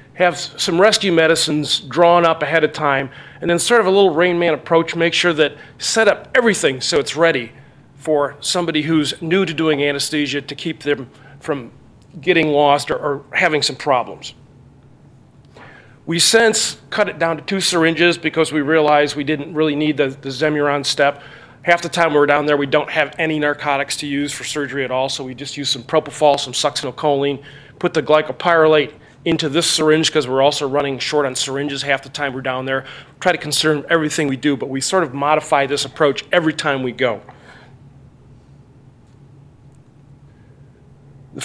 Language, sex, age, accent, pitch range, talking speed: English, male, 40-59, American, 135-160 Hz, 185 wpm